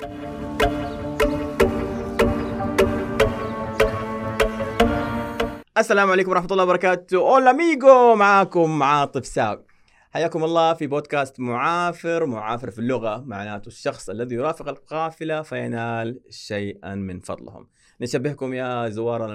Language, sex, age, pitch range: Arabic, male, 30-49, 105-140 Hz